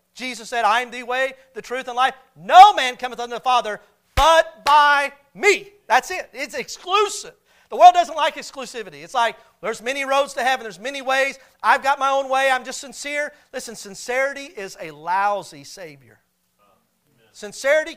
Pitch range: 195-260 Hz